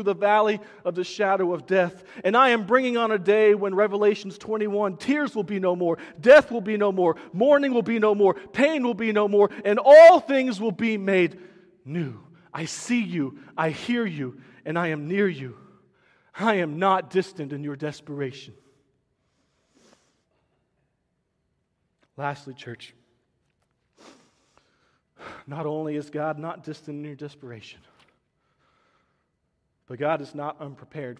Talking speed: 150 wpm